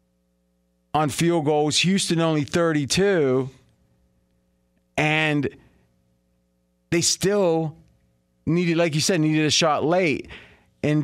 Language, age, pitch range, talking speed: English, 30-49, 115-155 Hz, 100 wpm